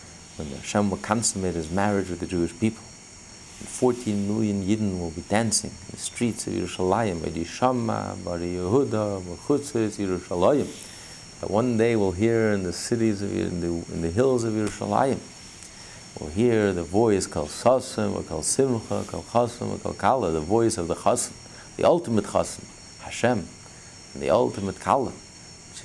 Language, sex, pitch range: English, male, 85-105 Hz